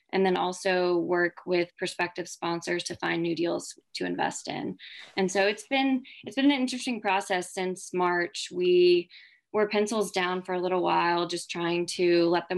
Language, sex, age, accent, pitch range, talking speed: English, female, 20-39, American, 170-185 Hz, 175 wpm